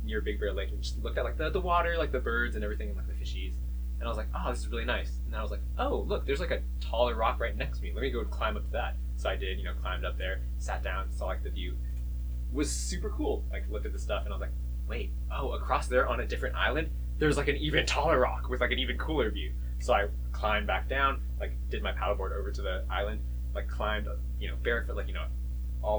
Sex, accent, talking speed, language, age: male, American, 280 wpm, English, 20-39